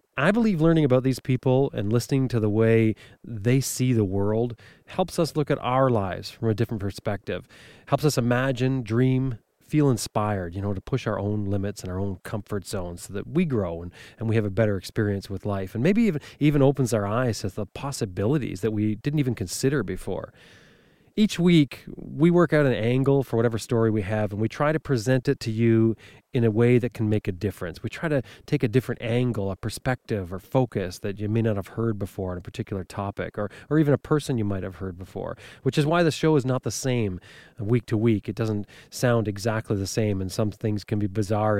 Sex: male